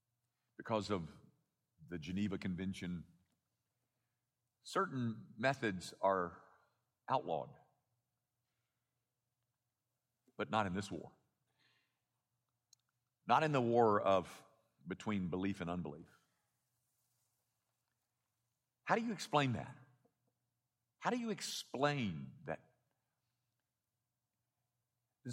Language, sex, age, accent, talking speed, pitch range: English, male, 50-69, American, 80 wpm, 110-125 Hz